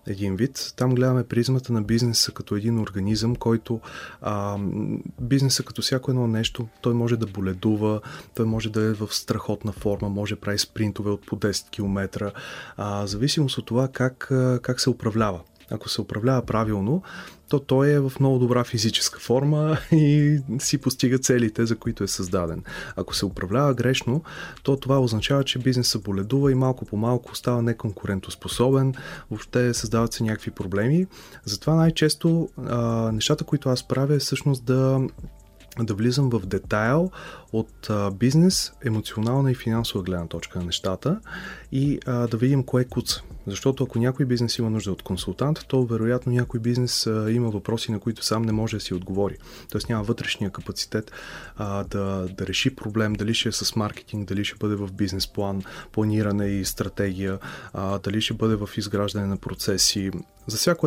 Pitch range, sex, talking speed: 105-130 Hz, male, 165 wpm